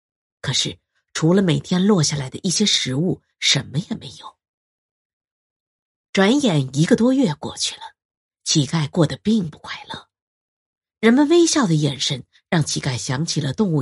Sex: female